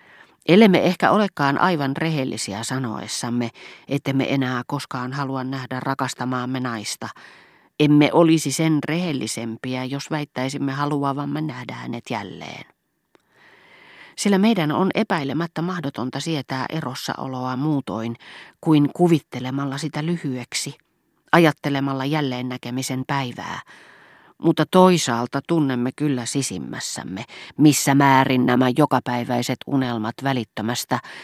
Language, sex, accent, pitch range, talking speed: Finnish, female, native, 125-150 Hz, 100 wpm